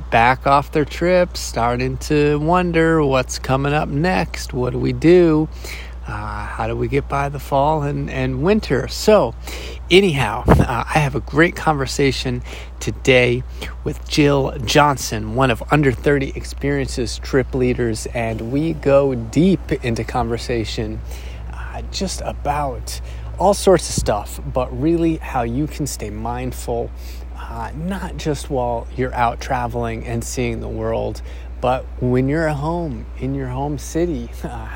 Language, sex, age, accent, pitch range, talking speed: English, male, 30-49, American, 110-150 Hz, 150 wpm